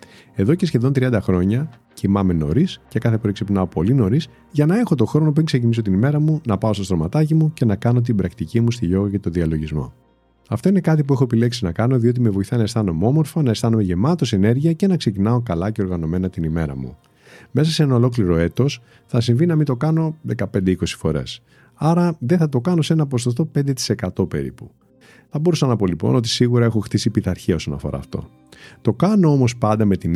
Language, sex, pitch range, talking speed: Greek, male, 100-145 Hz, 215 wpm